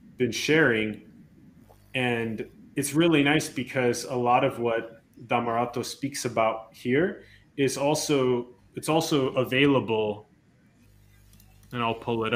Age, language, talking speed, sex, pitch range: 20-39, English, 115 wpm, male, 110-140 Hz